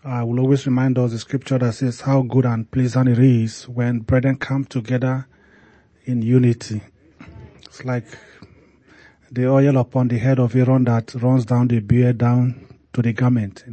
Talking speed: 175 wpm